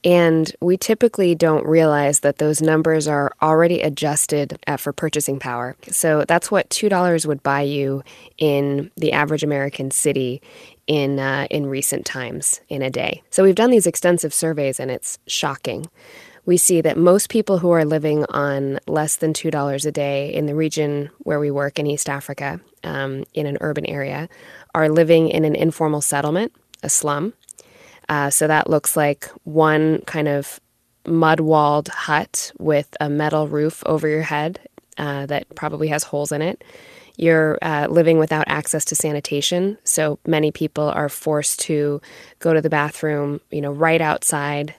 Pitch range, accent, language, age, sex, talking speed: 145-160 Hz, American, English, 20-39, female, 165 wpm